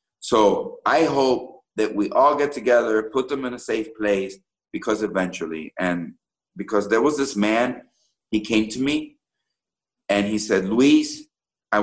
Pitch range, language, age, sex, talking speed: 100-155 Hz, English, 50-69, male, 155 wpm